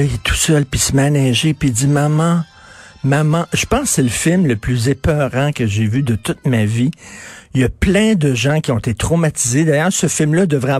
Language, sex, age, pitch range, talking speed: French, male, 50-69, 120-155 Hz, 245 wpm